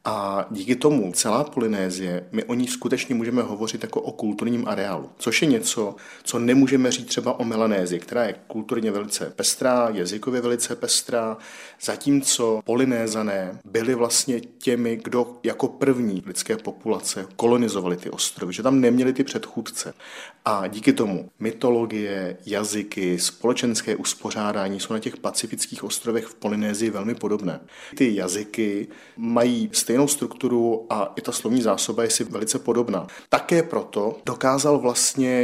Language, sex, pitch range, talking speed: Czech, male, 110-125 Hz, 145 wpm